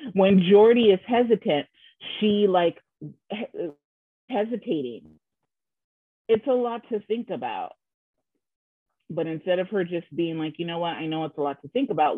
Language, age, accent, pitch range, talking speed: English, 30-49, American, 150-200 Hz, 160 wpm